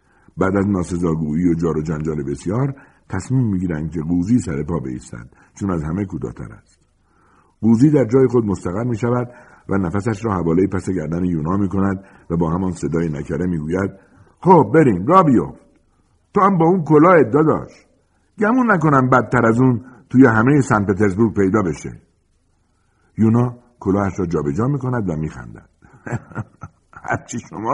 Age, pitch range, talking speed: 60-79, 85-130 Hz, 150 wpm